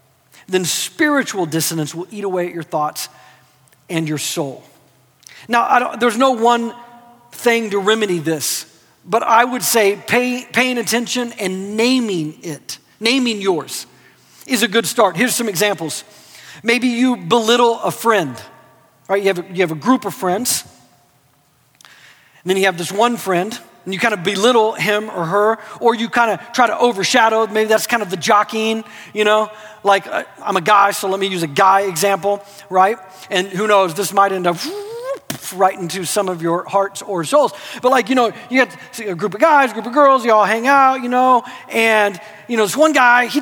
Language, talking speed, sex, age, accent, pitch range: English, 185 wpm, male, 40-59, American, 195-255 Hz